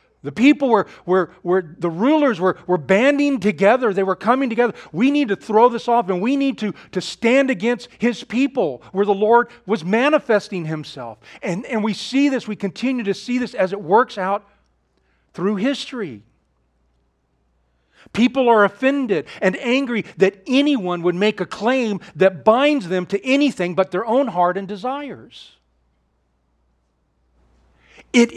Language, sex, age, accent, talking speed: English, male, 40-59, American, 155 wpm